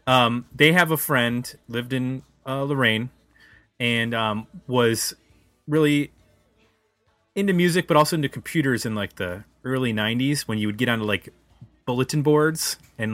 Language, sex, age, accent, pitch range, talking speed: English, male, 20-39, American, 110-145 Hz, 150 wpm